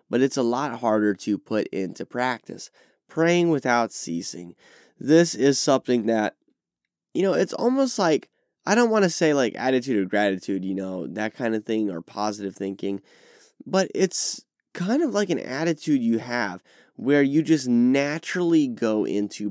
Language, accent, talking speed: English, American, 165 wpm